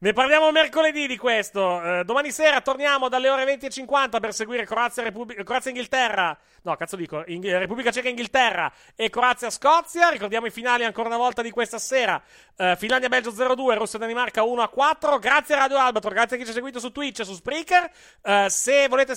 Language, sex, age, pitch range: Italian, male, 30-49, 190-265 Hz